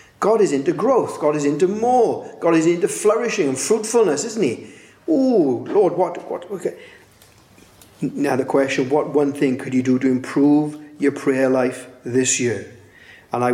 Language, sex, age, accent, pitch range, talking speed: English, male, 40-59, British, 130-170 Hz, 175 wpm